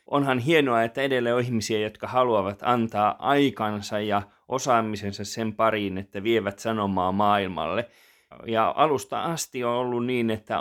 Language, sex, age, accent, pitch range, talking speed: Finnish, male, 20-39, native, 105-125 Hz, 140 wpm